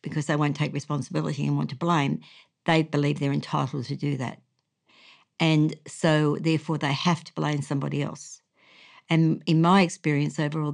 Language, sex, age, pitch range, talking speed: English, female, 60-79, 150-170 Hz, 175 wpm